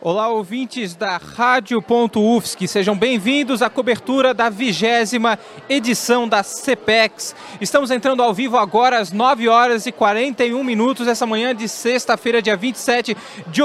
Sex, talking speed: male, 140 wpm